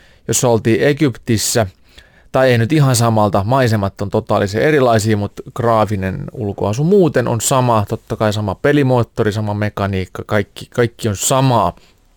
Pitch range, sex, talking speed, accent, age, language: 100-130 Hz, male, 140 wpm, native, 30-49, Finnish